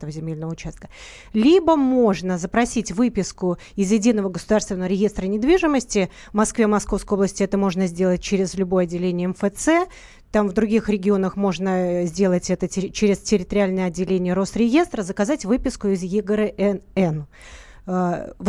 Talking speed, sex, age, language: 125 wpm, female, 30-49, Russian